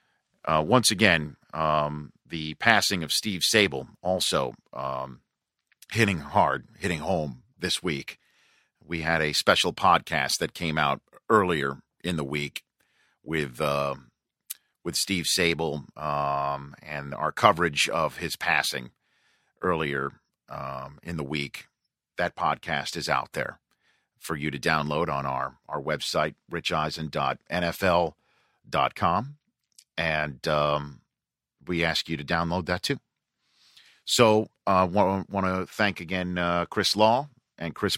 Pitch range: 75-100 Hz